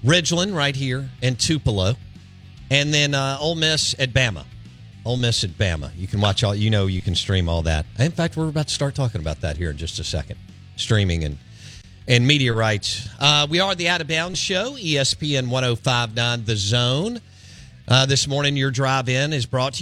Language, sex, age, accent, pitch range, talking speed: English, male, 50-69, American, 100-140 Hz, 200 wpm